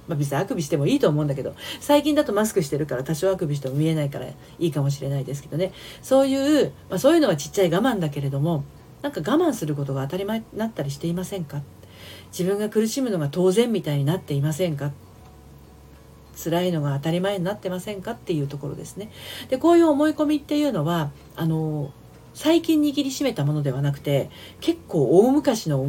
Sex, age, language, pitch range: female, 40-59, Japanese, 145-225 Hz